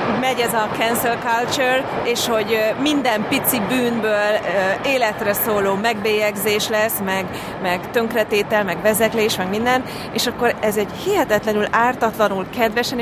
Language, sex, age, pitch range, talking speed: Hungarian, female, 30-49, 195-235 Hz, 130 wpm